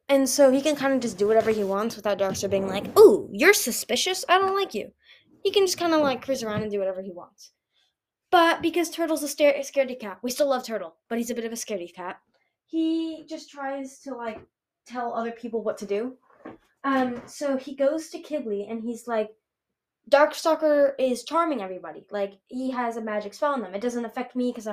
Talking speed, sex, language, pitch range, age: 225 wpm, female, English, 205-280 Hz, 10-29